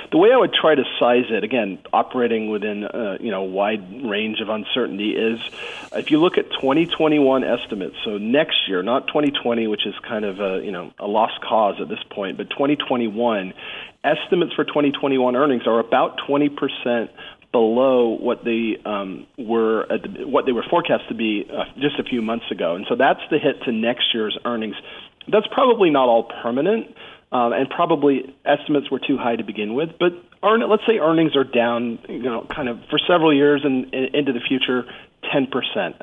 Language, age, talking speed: English, 40-59, 195 wpm